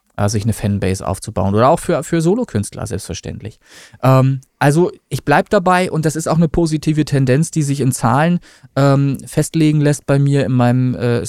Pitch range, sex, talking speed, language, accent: 120-155 Hz, male, 180 wpm, German, German